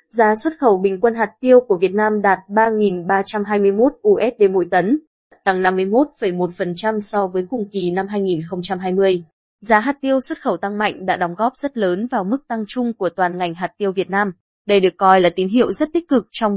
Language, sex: Vietnamese, female